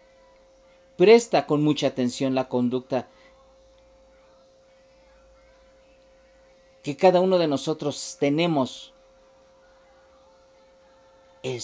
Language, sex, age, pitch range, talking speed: Spanish, male, 40-59, 125-180 Hz, 65 wpm